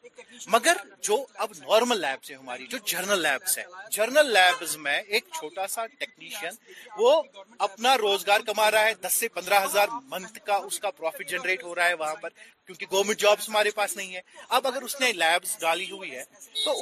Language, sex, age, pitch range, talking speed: Urdu, male, 30-49, 195-245 Hz, 195 wpm